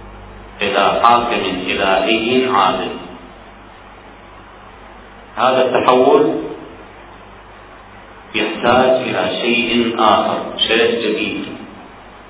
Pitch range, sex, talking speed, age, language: 110-135 Hz, male, 60 wpm, 40-59, Arabic